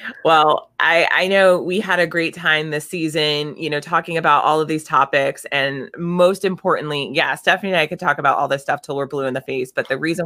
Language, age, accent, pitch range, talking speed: English, 20-39, American, 140-165 Hz, 240 wpm